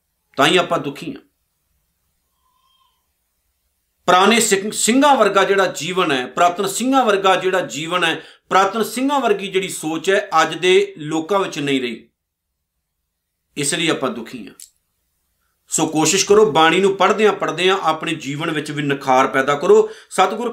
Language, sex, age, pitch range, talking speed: Punjabi, male, 50-69, 160-230 Hz, 150 wpm